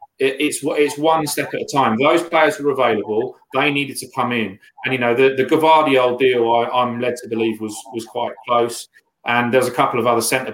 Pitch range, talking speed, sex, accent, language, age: 120-155 Hz, 235 wpm, male, British, English, 30-49